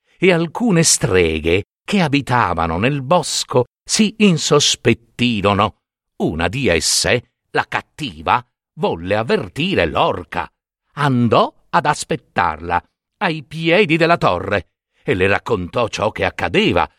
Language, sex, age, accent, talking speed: Italian, male, 60-79, native, 105 wpm